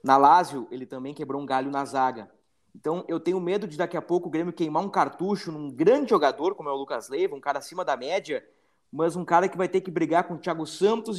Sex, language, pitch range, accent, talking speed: male, Portuguese, 155-190 Hz, Brazilian, 250 wpm